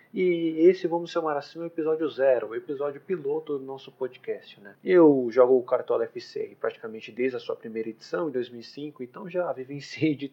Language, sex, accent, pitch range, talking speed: Portuguese, male, Brazilian, 120-170 Hz, 190 wpm